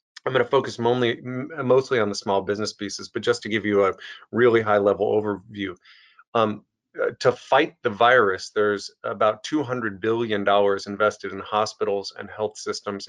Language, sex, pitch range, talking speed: English, male, 105-115 Hz, 155 wpm